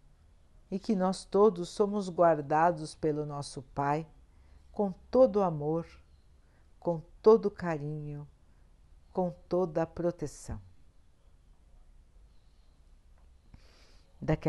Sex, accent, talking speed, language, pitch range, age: female, Brazilian, 85 wpm, Portuguese, 125-180 Hz, 60-79